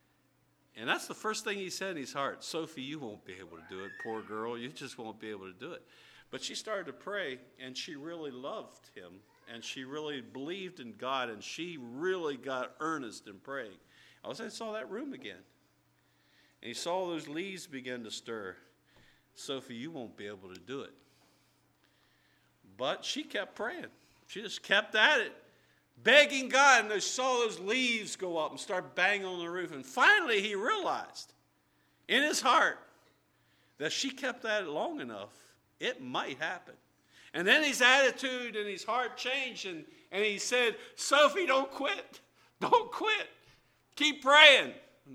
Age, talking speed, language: 50-69, 180 wpm, English